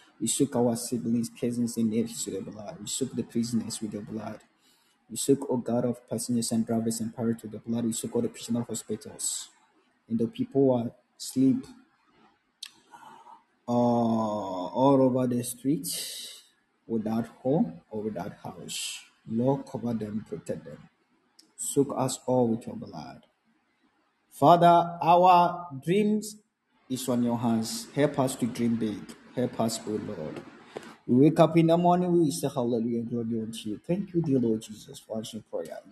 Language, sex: Japanese, male